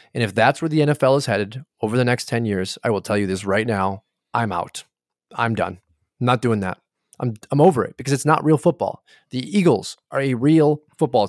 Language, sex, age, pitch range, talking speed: English, male, 30-49, 105-130 Hz, 230 wpm